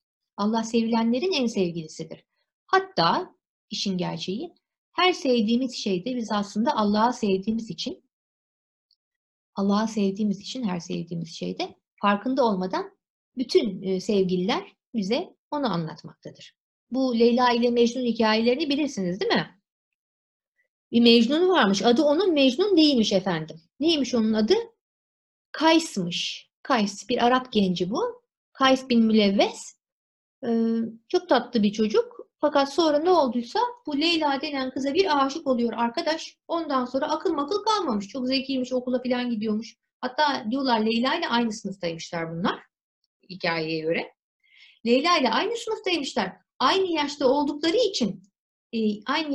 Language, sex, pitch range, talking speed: Turkish, female, 205-290 Hz, 120 wpm